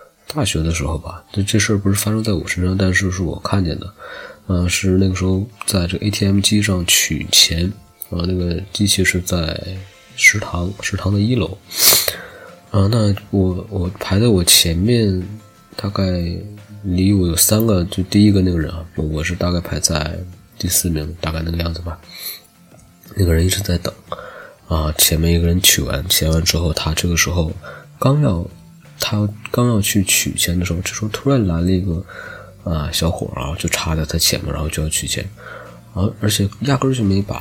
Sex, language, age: male, Chinese, 20-39